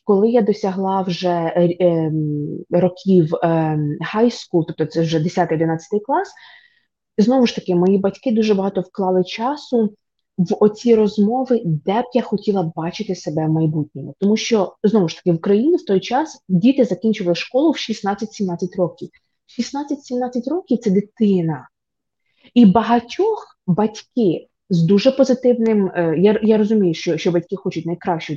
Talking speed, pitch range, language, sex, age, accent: 150 wpm, 175-230 Hz, Ukrainian, female, 20-39, native